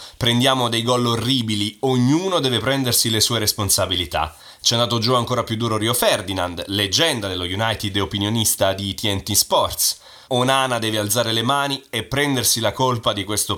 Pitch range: 105-145 Hz